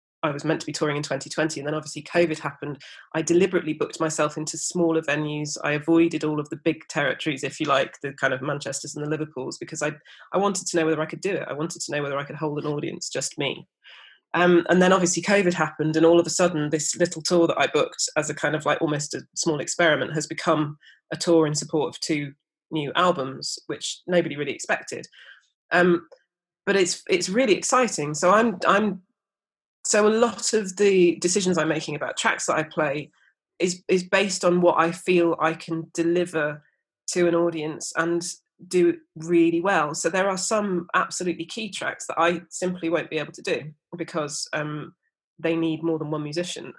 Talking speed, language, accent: 210 wpm, English, British